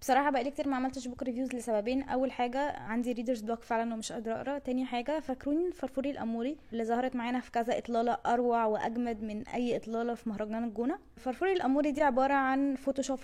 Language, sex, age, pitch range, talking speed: English, female, 20-39, 225-275 Hz, 190 wpm